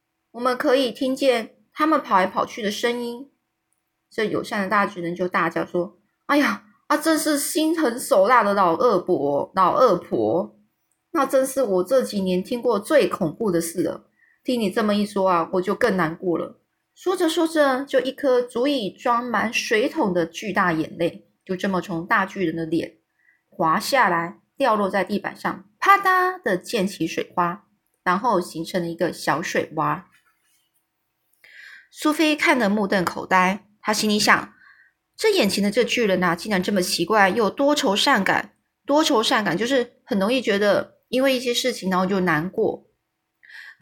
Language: Chinese